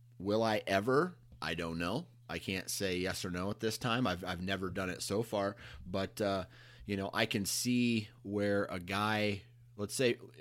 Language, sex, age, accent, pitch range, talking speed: English, male, 30-49, American, 95-115 Hz, 195 wpm